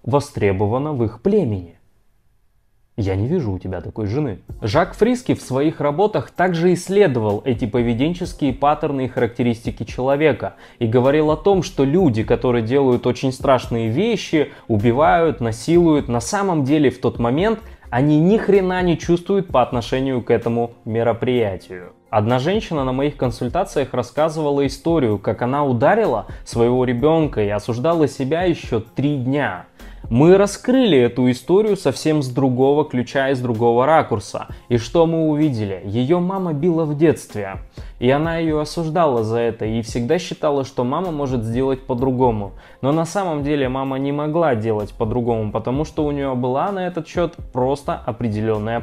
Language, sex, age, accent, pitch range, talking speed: Russian, male, 20-39, native, 120-155 Hz, 155 wpm